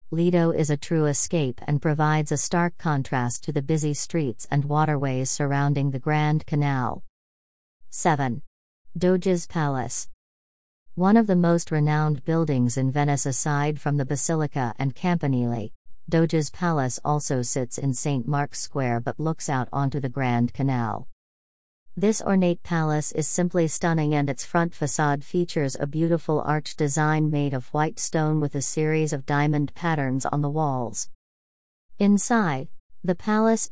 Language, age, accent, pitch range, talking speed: English, 40-59, American, 135-165 Hz, 150 wpm